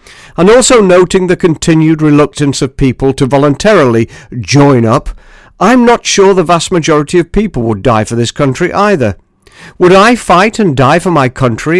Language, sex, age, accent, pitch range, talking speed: English, male, 50-69, British, 125-160 Hz, 175 wpm